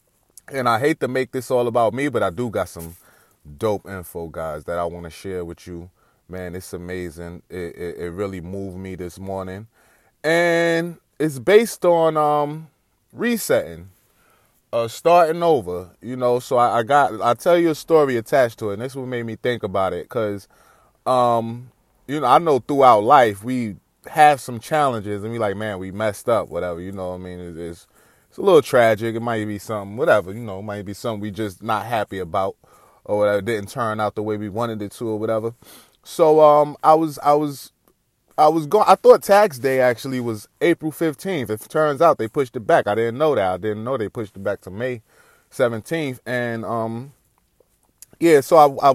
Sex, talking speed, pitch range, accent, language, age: male, 210 wpm, 105-145 Hz, American, English, 20-39